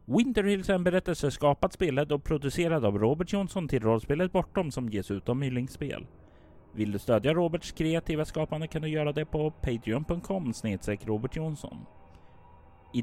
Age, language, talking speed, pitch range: 30-49, Swedish, 155 wpm, 105-170 Hz